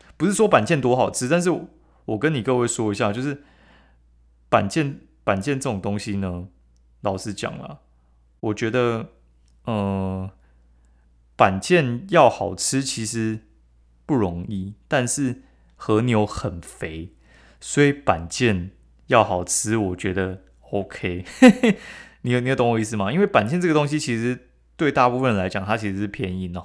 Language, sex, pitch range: Chinese, male, 95-125 Hz